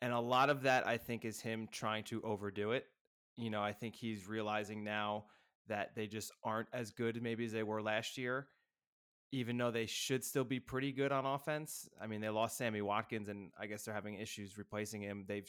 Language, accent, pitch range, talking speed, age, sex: English, American, 110-130 Hz, 220 wpm, 20-39, male